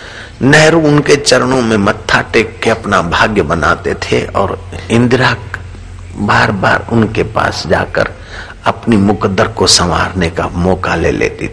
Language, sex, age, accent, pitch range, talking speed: Hindi, male, 60-79, native, 90-115 Hz, 135 wpm